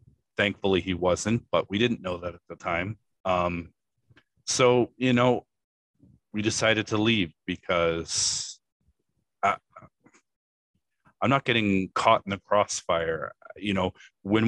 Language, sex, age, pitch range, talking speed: English, male, 30-49, 90-115 Hz, 125 wpm